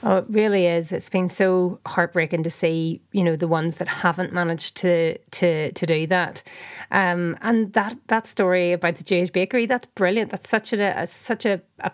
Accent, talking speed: Irish, 195 wpm